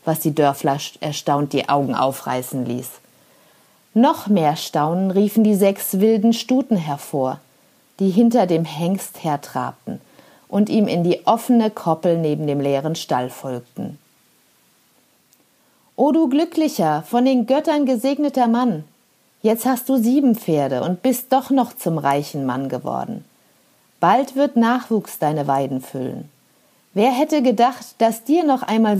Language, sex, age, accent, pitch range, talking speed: German, female, 50-69, German, 150-235 Hz, 140 wpm